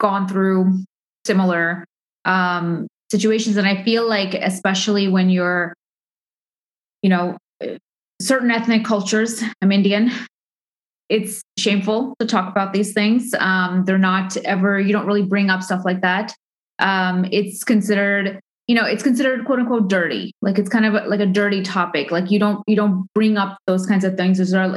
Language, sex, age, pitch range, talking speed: English, female, 20-39, 190-235 Hz, 165 wpm